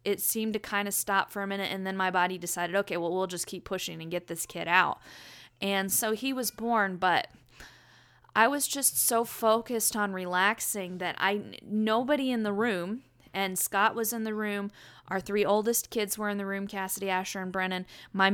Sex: female